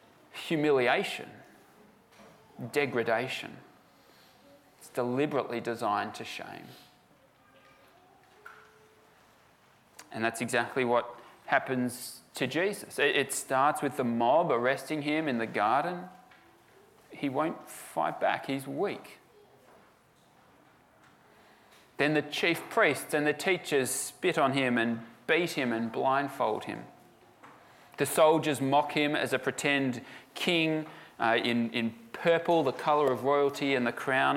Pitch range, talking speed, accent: 120-150 Hz, 115 wpm, Australian